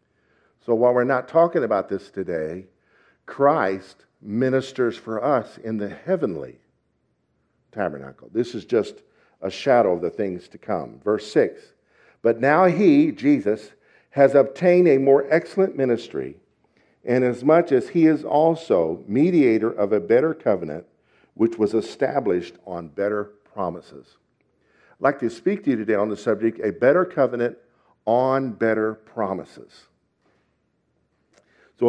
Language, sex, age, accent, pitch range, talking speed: English, male, 50-69, American, 110-145 Hz, 135 wpm